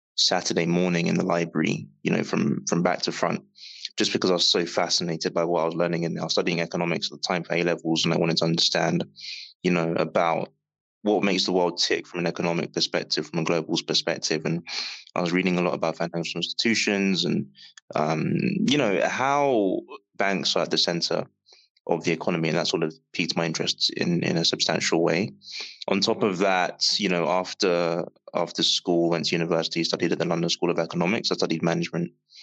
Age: 20-39